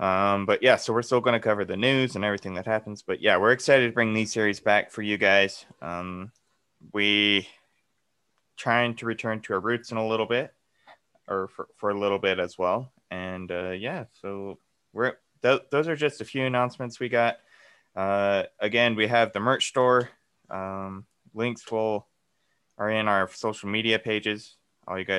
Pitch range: 95-115 Hz